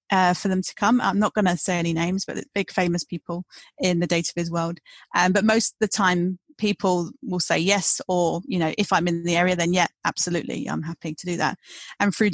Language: English